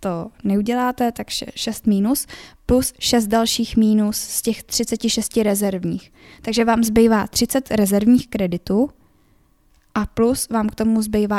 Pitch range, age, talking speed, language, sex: 210-230 Hz, 10-29, 135 wpm, Czech, female